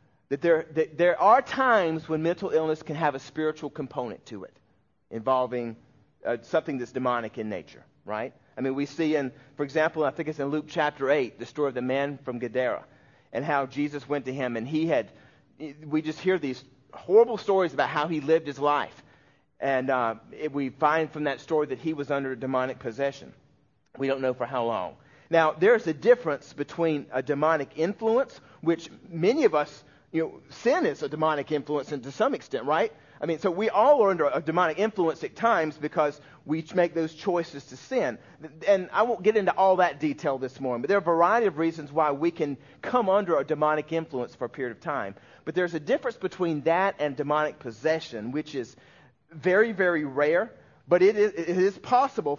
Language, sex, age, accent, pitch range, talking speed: English, male, 40-59, American, 140-170 Hz, 205 wpm